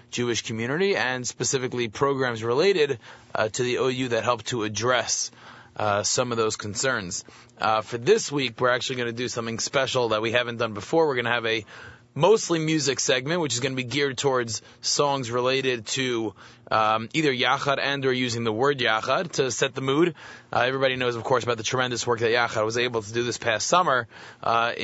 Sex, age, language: male, 30-49, English